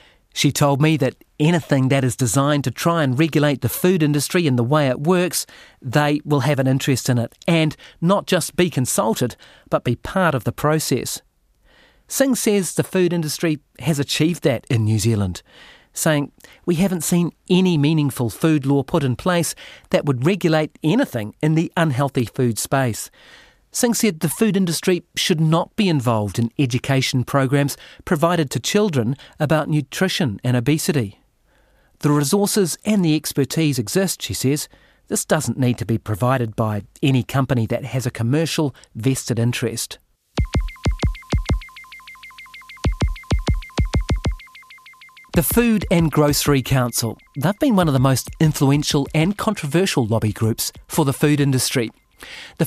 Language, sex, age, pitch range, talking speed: English, male, 40-59, 130-175 Hz, 150 wpm